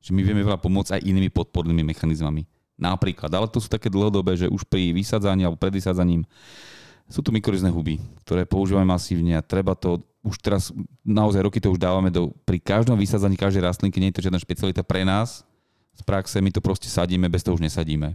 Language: Slovak